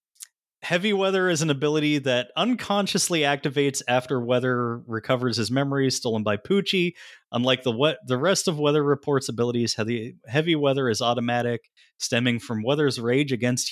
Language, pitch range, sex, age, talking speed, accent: English, 115-145 Hz, male, 20-39, 155 wpm, American